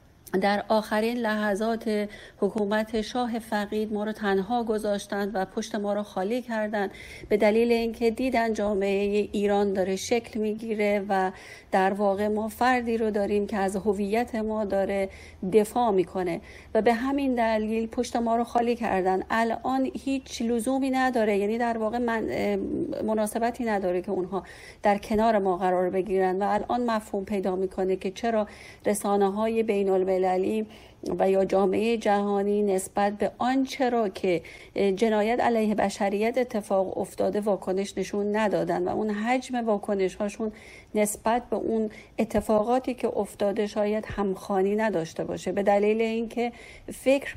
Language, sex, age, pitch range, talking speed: Persian, female, 40-59, 195-225 Hz, 140 wpm